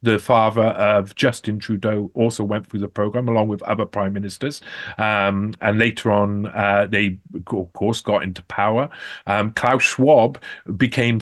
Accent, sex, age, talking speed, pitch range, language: British, male, 40-59, 160 wpm, 100-130 Hz, English